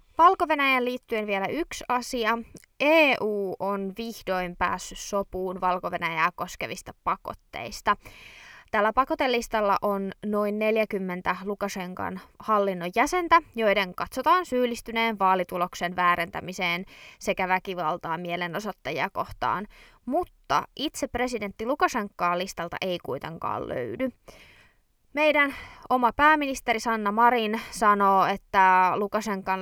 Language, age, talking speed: Finnish, 20-39, 95 wpm